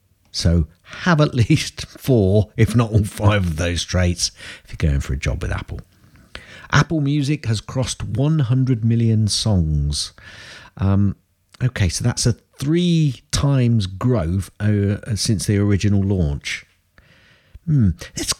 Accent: British